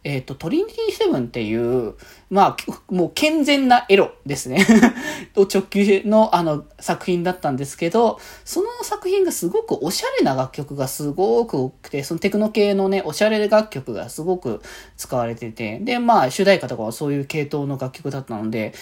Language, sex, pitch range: Japanese, male, 130-210 Hz